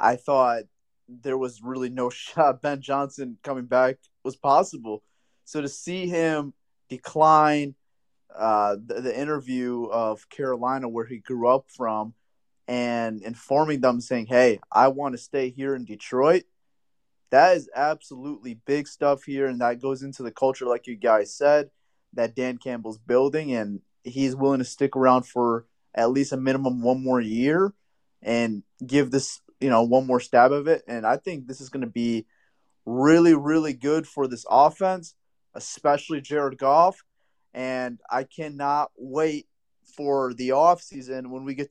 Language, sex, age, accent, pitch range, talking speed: English, male, 20-39, American, 125-145 Hz, 160 wpm